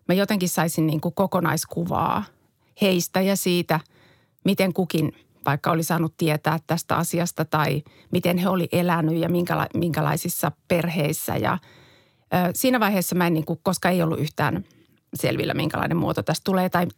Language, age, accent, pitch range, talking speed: Finnish, 30-49, native, 165-200 Hz, 155 wpm